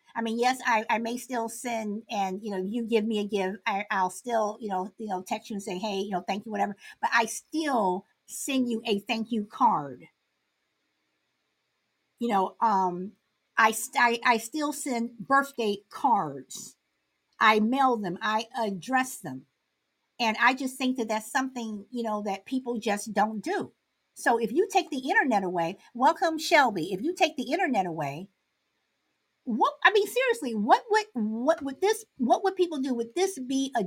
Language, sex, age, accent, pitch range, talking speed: English, female, 50-69, American, 215-265 Hz, 185 wpm